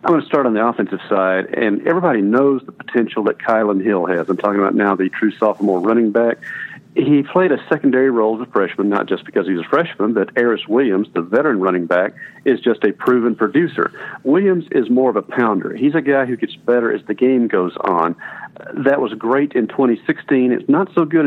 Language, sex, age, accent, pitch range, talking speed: English, male, 50-69, American, 105-135 Hz, 220 wpm